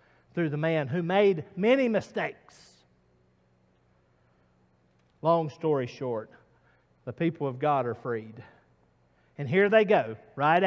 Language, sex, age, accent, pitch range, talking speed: English, male, 50-69, American, 155-245 Hz, 120 wpm